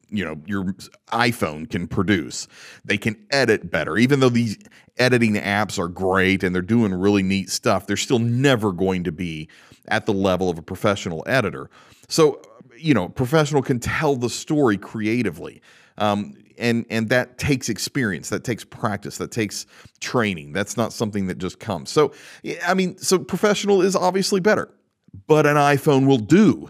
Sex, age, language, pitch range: male, 40-59, English, 100-155 Hz